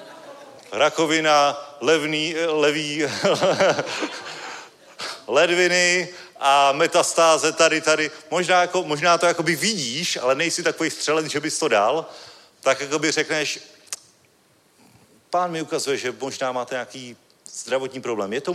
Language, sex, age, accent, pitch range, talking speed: Czech, male, 40-59, native, 145-175 Hz, 115 wpm